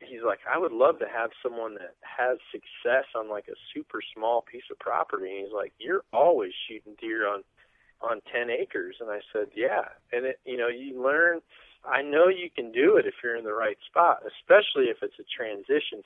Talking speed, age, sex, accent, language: 215 wpm, 40-59, male, American, English